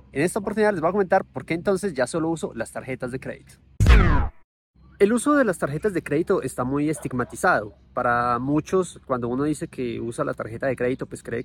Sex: male